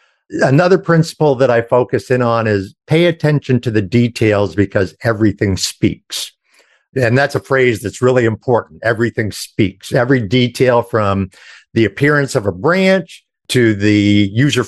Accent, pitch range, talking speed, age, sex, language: American, 105-140 Hz, 145 wpm, 50-69, male, English